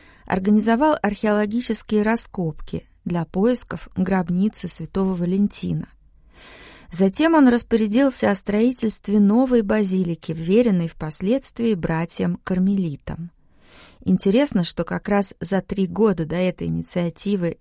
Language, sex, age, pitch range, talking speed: Russian, female, 30-49, 170-215 Hz, 100 wpm